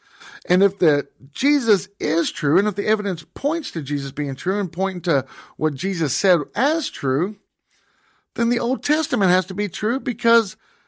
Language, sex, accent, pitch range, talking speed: English, male, American, 165-235 Hz, 170 wpm